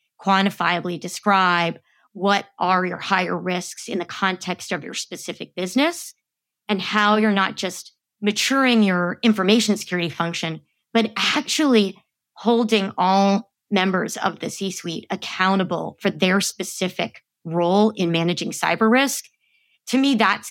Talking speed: 130 wpm